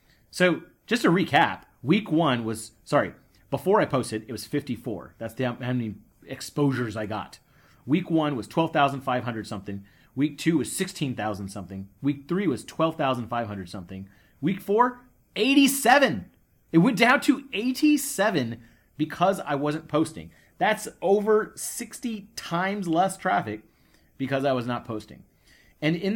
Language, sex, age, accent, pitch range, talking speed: English, male, 30-49, American, 115-175 Hz, 140 wpm